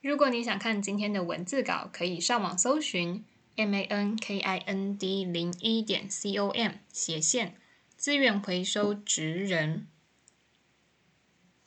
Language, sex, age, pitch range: Chinese, female, 10-29, 175-215 Hz